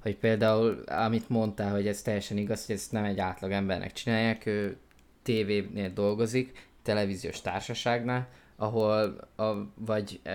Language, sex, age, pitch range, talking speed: Hungarian, male, 20-39, 100-115 Hz, 135 wpm